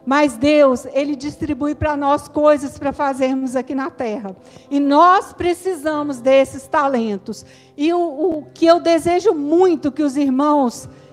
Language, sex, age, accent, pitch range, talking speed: Portuguese, female, 50-69, Brazilian, 275-345 Hz, 145 wpm